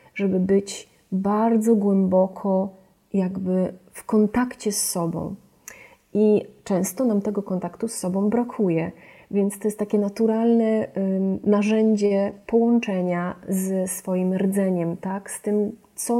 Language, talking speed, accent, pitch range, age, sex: Polish, 115 wpm, native, 185-210 Hz, 30-49, female